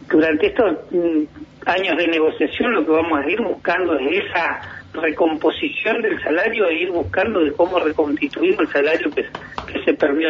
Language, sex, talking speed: Spanish, male, 165 wpm